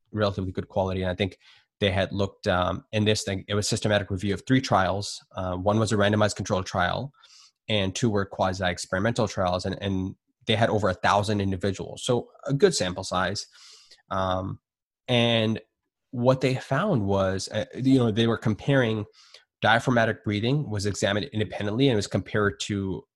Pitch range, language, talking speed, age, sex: 95-115 Hz, English, 175 wpm, 20-39, male